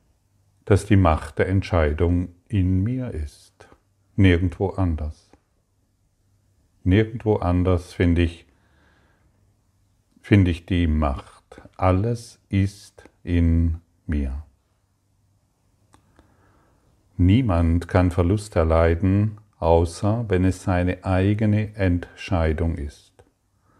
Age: 50-69